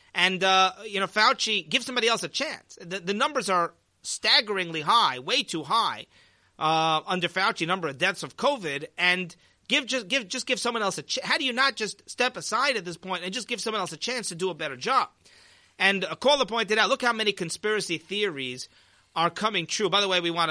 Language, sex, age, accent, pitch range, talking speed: English, male, 30-49, American, 165-200 Hz, 225 wpm